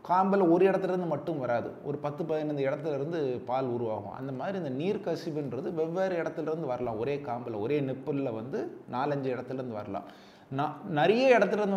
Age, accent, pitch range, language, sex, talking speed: 20-39, native, 135-180 Hz, Tamil, male, 160 wpm